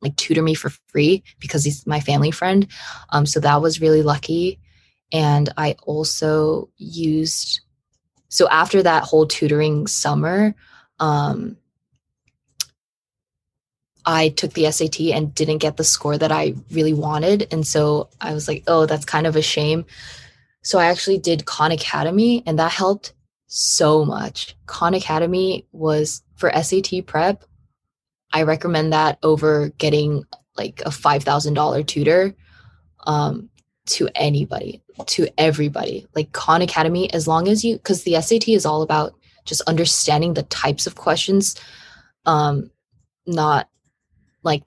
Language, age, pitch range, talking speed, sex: English, 20-39, 150-170 Hz, 140 wpm, female